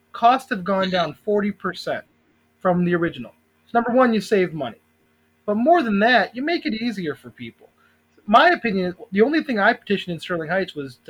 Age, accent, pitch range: 30-49, American, 175-230 Hz